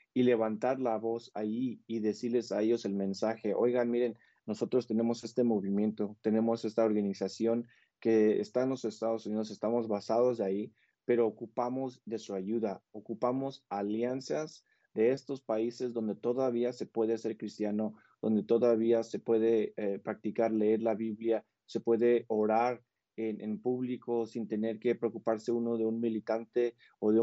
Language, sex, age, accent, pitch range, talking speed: English, male, 30-49, Mexican, 110-120 Hz, 155 wpm